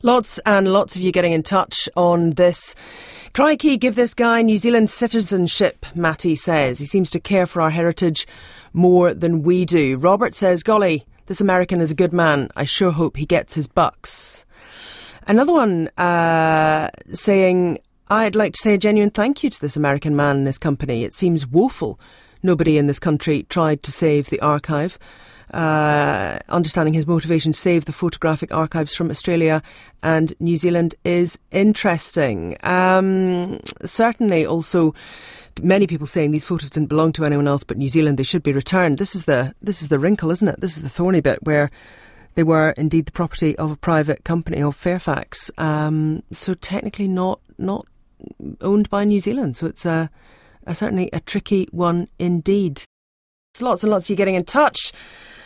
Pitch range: 155-190 Hz